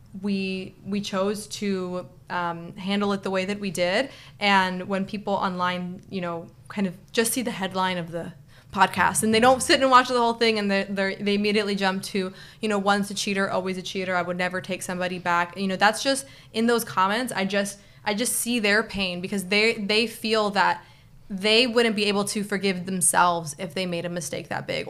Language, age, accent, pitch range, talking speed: English, 20-39, American, 180-215 Hz, 215 wpm